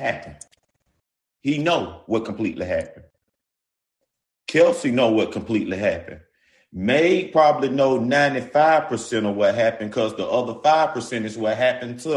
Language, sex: English, male